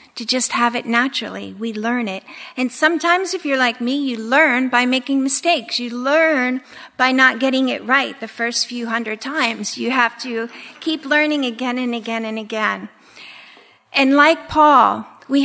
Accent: American